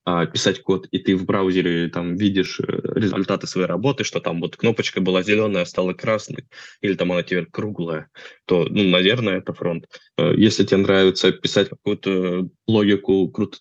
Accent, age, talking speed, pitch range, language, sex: native, 20-39, 155 wpm, 95-115 Hz, Russian, male